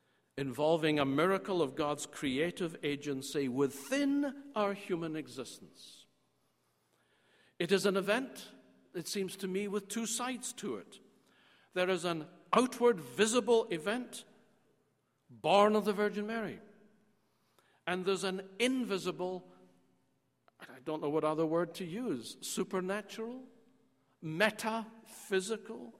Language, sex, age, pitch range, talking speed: English, male, 60-79, 145-215 Hz, 115 wpm